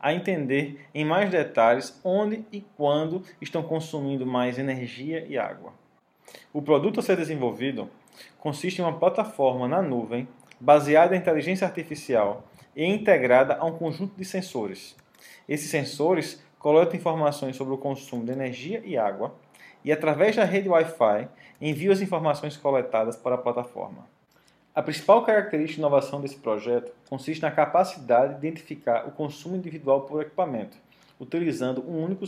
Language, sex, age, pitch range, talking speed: Portuguese, male, 20-39, 130-170 Hz, 145 wpm